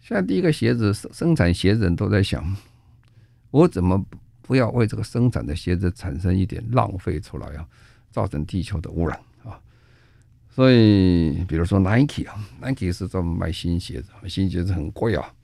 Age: 50-69